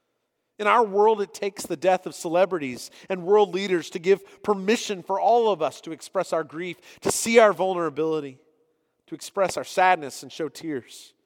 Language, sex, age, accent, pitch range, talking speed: English, male, 40-59, American, 160-210 Hz, 180 wpm